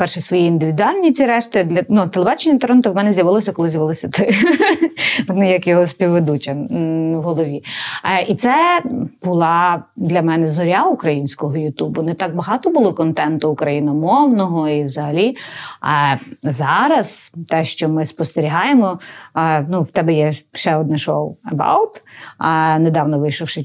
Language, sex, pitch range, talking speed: Ukrainian, female, 160-225 Hz, 130 wpm